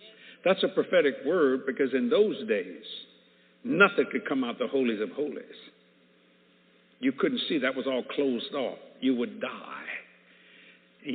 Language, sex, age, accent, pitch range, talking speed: English, male, 60-79, American, 125-175 Hz, 150 wpm